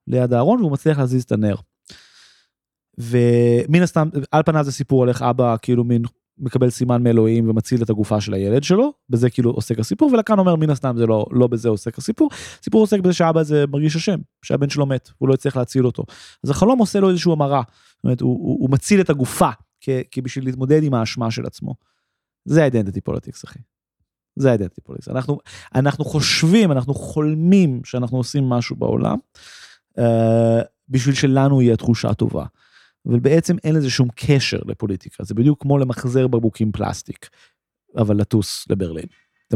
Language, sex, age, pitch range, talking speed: Hebrew, male, 20-39, 120-160 Hz, 145 wpm